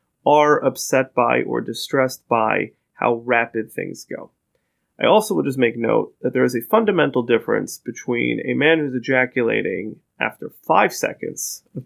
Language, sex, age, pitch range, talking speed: English, male, 30-49, 125-155 Hz, 155 wpm